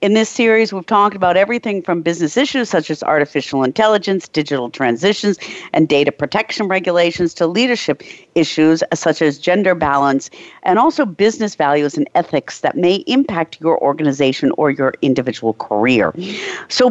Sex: female